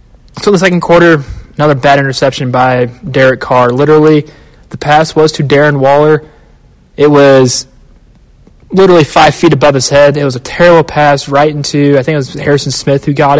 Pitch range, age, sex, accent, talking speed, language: 130-155 Hz, 20-39, male, American, 185 wpm, English